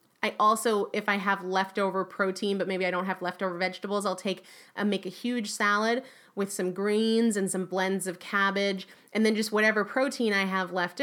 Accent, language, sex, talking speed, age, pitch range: American, English, female, 200 wpm, 30-49, 190-230 Hz